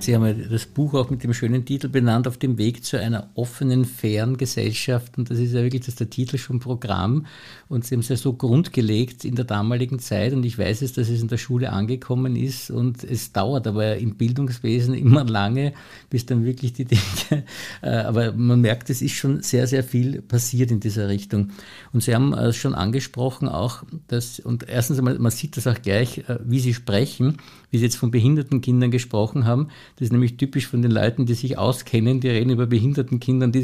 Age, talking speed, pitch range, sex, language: 50-69, 210 wpm, 120-135 Hz, male, German